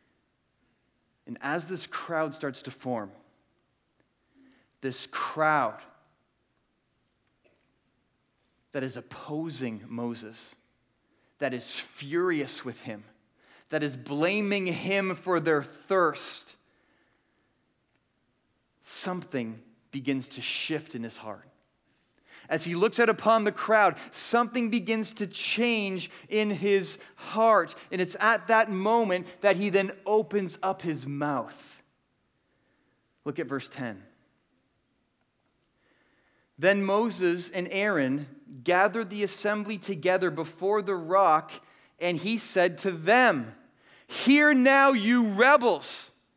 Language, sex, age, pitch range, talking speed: English, male, 30-49, 145-215 Hz, 105 wpm